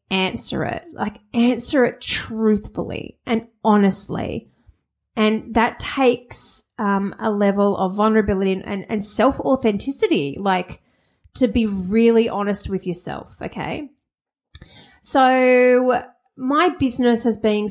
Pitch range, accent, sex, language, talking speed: 190-245 Hz, Australian, female, English, 110 wpm